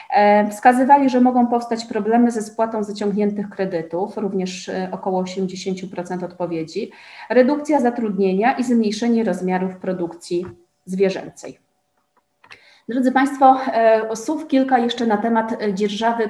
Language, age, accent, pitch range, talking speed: Polish, 30-49, native, 195-230 Hz, 105 wpm